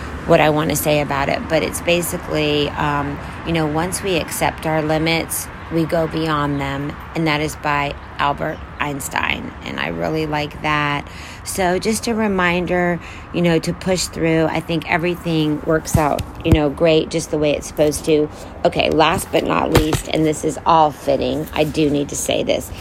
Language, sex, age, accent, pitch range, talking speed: English, female, 40-59, American, 135-170 Hz, 190 wpm